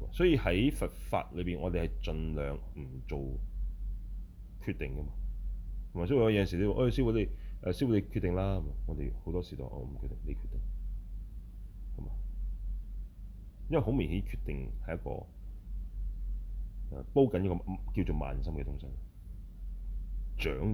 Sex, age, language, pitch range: male, 30-49, Chinese, 75-95 Hz